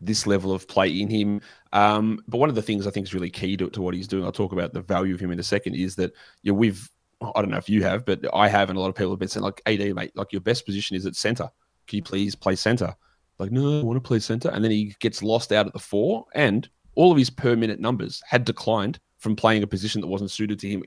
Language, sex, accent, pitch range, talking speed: English, male, Australian, 95-110 Hz, 290 wpm